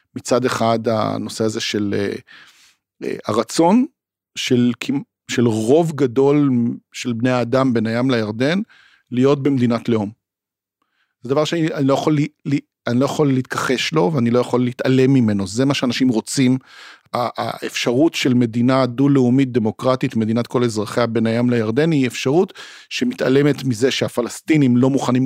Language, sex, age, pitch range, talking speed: Hebrew, male, 50-69, 120-145 Hz, 140 wpm